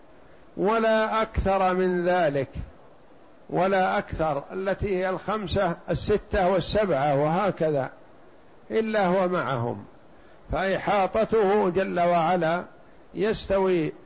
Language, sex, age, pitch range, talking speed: Arabic, male, 50-69, 165-195 Hz, 80 wpm